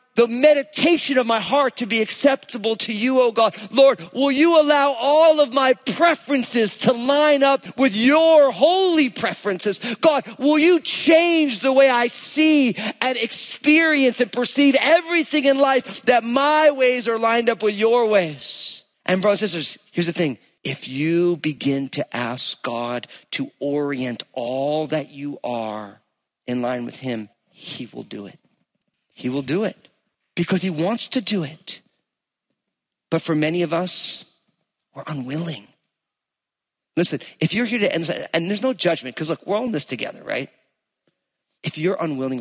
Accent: American